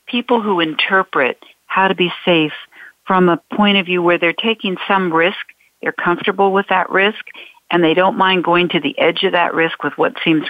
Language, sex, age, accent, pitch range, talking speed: English, female, 60-79, American, 155-190 Hz, 205 wpm